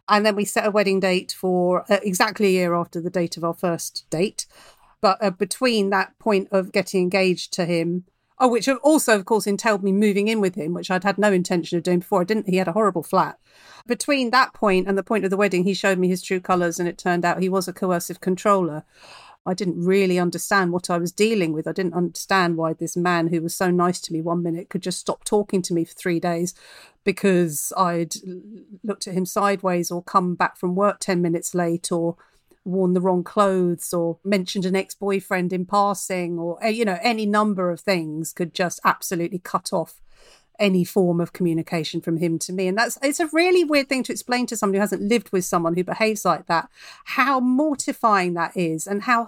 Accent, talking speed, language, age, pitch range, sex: British, 220 wpm, English, 40-59, 175-215 Hz, female